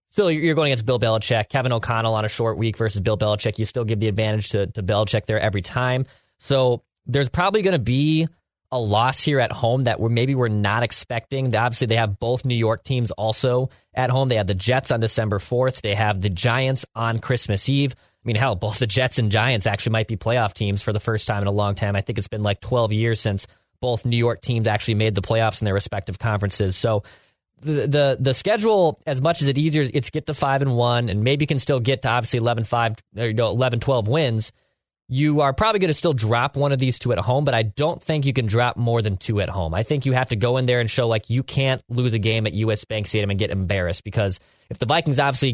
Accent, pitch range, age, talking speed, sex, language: American, 110-130 Hz, 20-39, 255 wpm, male, English